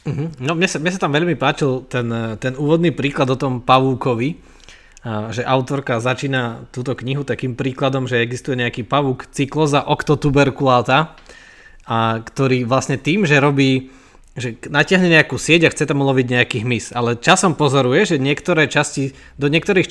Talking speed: 155 wpm